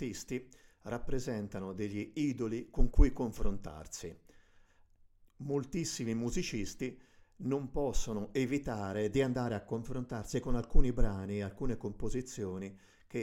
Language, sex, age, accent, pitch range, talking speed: Italian, male, 50-69, native, 95-120 Hz, 95 wpm